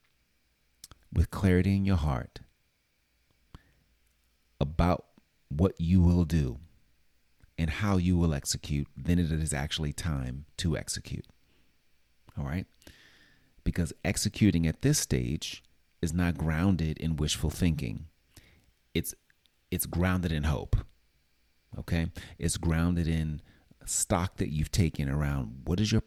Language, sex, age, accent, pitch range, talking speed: English, male, 40-59, American, 75-90 Hz, 120 wpm